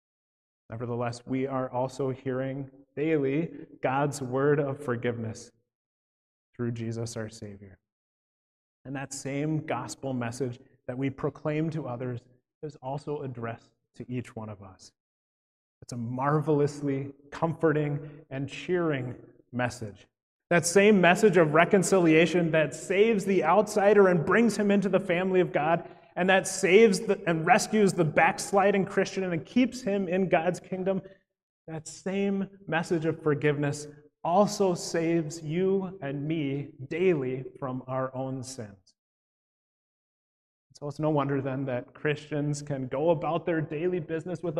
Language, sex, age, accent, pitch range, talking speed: English, male, 30-49, American, 130-180 Hz, 135 wpm